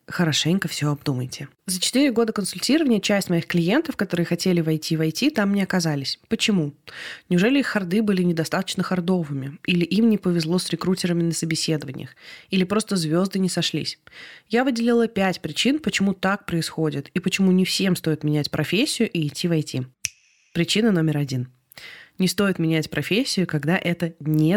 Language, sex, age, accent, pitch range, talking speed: Russian, female, 20-39, native, 160-210 Hz, 155 wpm